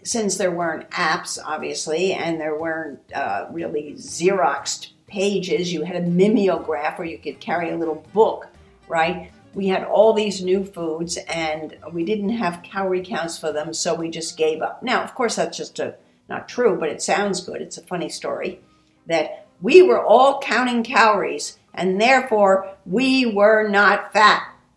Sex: female